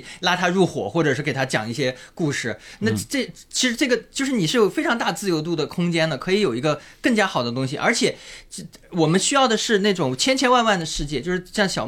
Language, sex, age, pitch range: Chinese, male, 20-39, 140-195 Hz